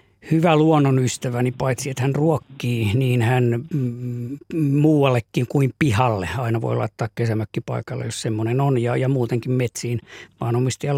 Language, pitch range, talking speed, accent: Finnish, 120-140 Hz, 140 wpm, native